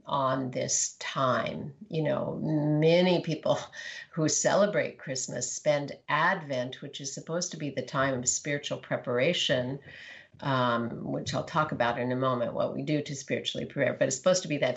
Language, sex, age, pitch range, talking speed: English, female, 50-69, 130-165 Hz, 170 wpm